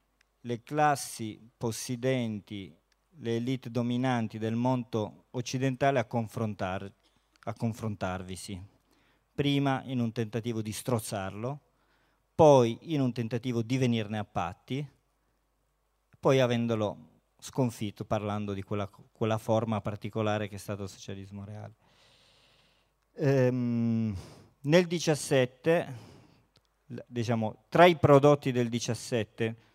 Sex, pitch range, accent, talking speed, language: male, 110-135 Hz, native, 100 wpm, Italian